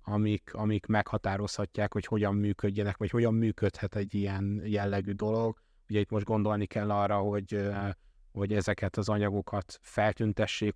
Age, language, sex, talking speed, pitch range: 20-39, Hungarian, male, 140 wpm, 100-110 Hz